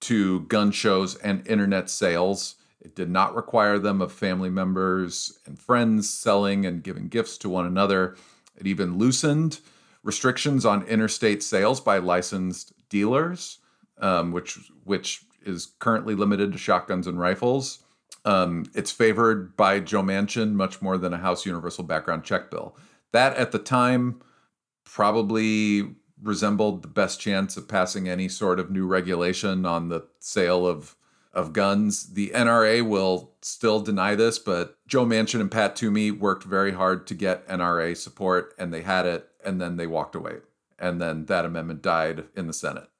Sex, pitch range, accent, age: male, 90-110 Hz, American, 40-59